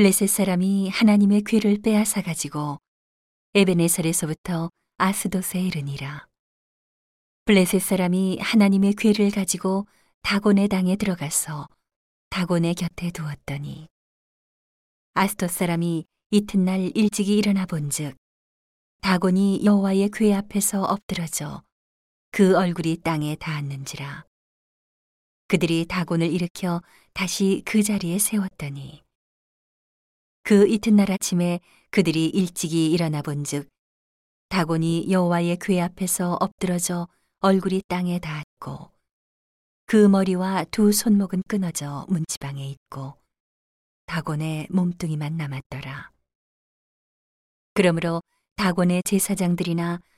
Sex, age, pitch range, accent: female, 40-59, 150-195 Hz, native